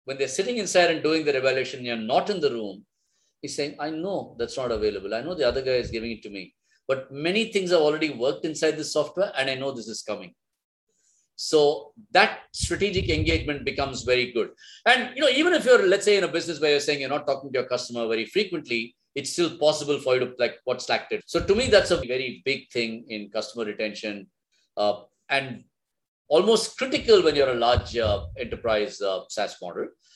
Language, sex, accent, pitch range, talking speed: English, male, Indian, 125-180 Hz, 215 wpm